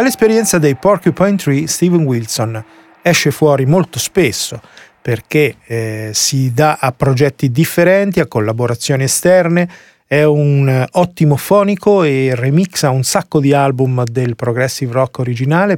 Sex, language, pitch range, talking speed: male, Italian, 130-175 Hz, 135 wpm